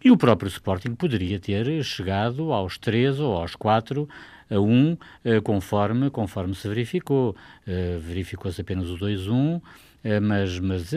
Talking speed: 130 wpm